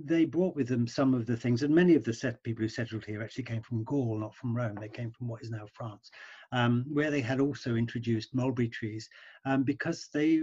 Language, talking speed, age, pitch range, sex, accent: English, 240 wpm, 50-69, 115-135 Hz, male, British